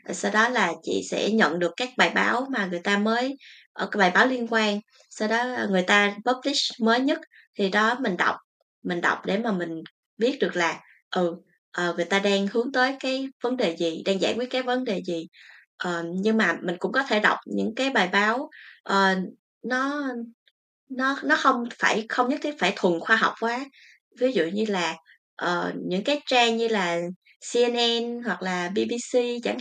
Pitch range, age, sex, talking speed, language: 185-250 Hz, 20-39, female, 190 wpm, Vietnamese